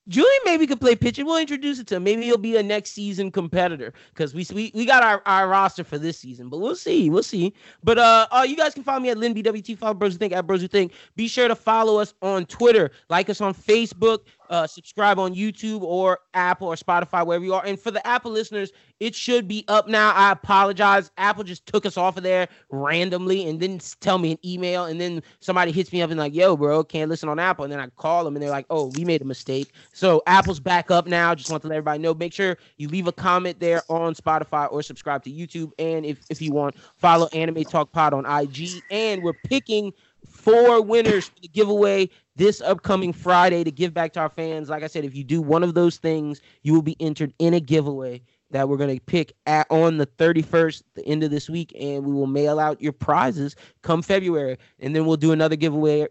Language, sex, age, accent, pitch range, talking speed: English, male, 20-39, American, 150-200 Hz, 240 wpm